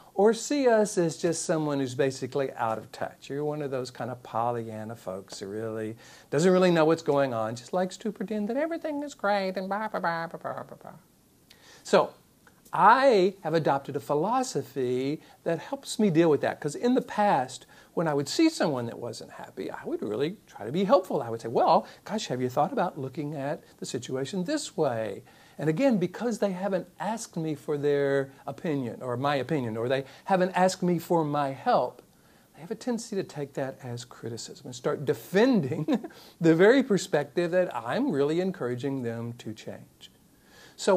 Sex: male